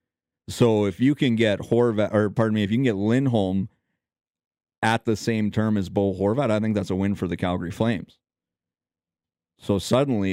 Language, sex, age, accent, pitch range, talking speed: English, male, 30-49, American, 90-110 Hz, 185 wpm